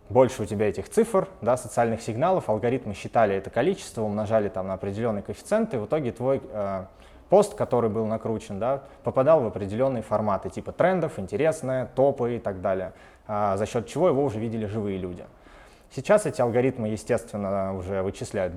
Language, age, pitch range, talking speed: Russian, 20-39, 100-130 Hz, 170 wpm